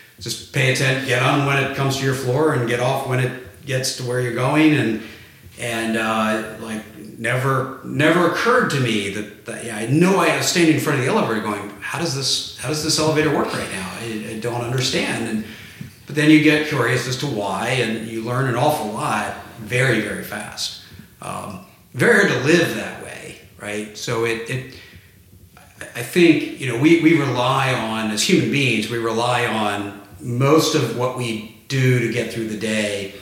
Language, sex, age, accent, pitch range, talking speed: English, male, 50-69, American, 105-135 Hz, 200 wpm